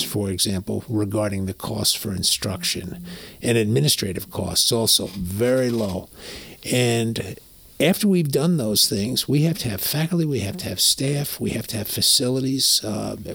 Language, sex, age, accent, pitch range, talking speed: English, male, 50-69, American, 105-135 Hz, 155 wpm